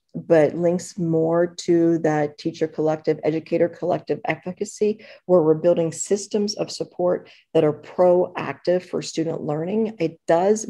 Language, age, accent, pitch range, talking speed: English, 40-59, American, 160-180 Hz, 135 wpm